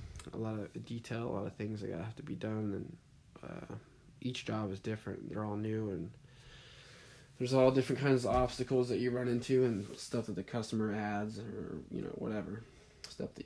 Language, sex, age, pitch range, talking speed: English, male, 20-39, 75-115 Hz, 200 wpm